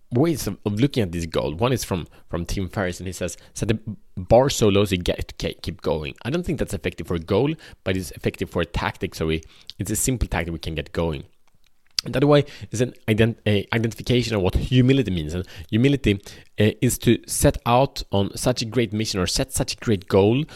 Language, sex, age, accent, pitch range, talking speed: Swedish, male, 30-49, Norwegian, 95-125 Hz, 235 wpm